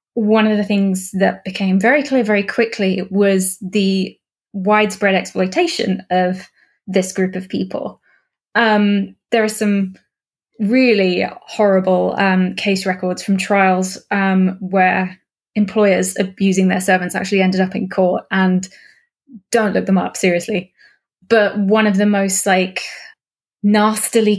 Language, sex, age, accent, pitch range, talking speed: English, female, 20-39, British, 185-210 Hz, 135 wpm